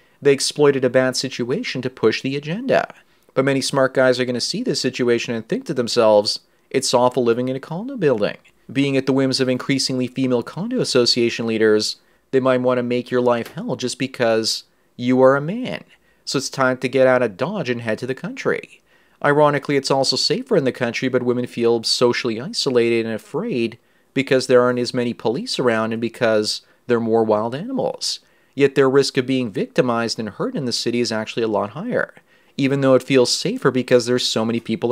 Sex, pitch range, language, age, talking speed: male, 120-135 Hz, English, 30-49, 210 wpm